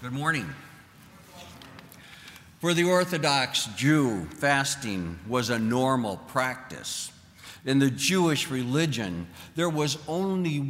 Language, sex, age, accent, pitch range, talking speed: English, male, 60-79, American, 115-145 Hz, 100 wpm